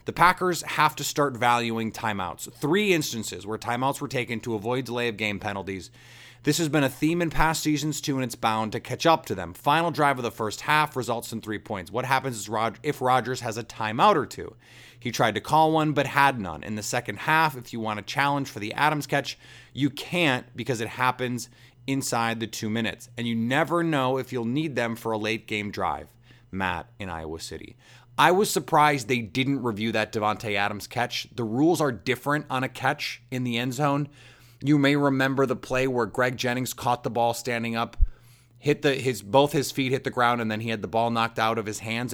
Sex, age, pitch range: male, 30-49, 115-140 Hz